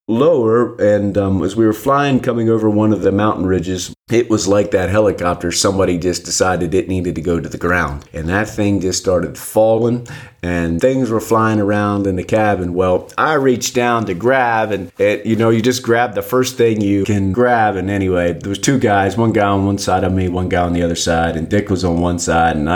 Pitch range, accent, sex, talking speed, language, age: 90-115 Hz, American, male, 225 wpm, English, 30-49